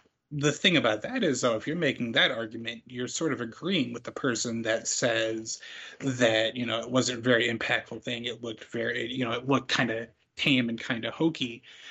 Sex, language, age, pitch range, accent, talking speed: male, English, 30-49, 115-135 Hz, American, 215 wpm